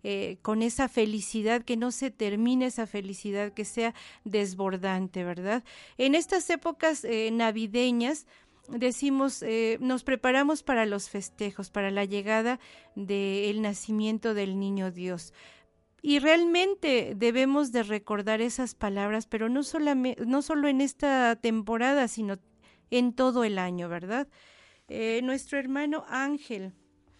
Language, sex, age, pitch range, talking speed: Spanish, female, 40-59, 205-255 Hz, 130 wpm